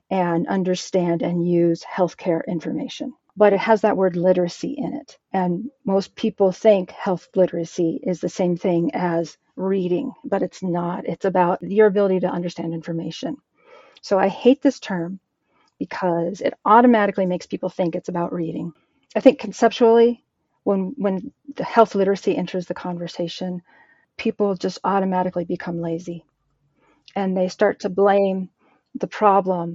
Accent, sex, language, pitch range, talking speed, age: American, female, English, 175-195 Hz, 145 wpm, 40-59